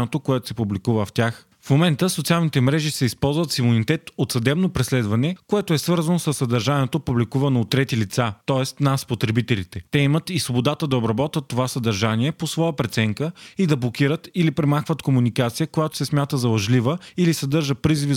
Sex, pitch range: male, 120-150 Hz